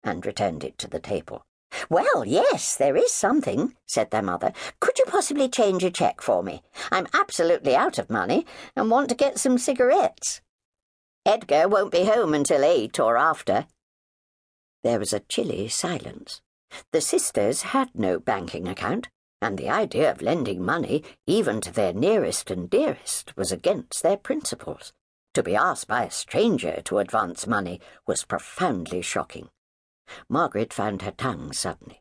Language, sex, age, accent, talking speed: English, female, 60-79, British, 160 wpm